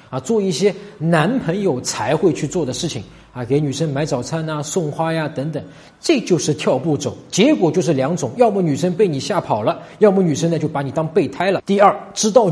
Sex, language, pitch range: male, Chinese, 140-200 Hz